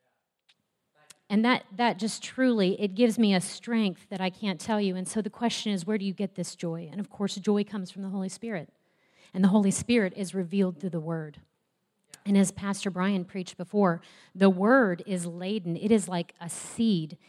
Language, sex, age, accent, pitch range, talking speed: English, female, 30-49, American, 185-235 Hz, 205 wpm